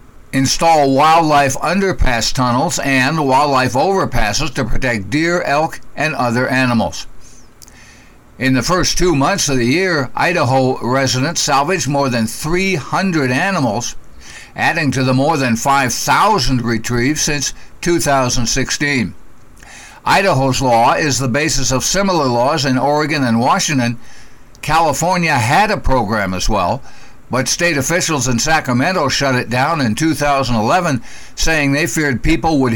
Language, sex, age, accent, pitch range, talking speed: English, male, 60-79, American, 125-155 Hz, 130 wpm